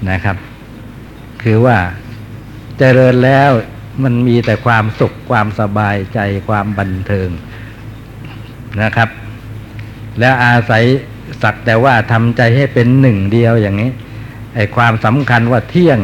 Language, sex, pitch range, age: Thai, male, 110-130 Hz, 60-79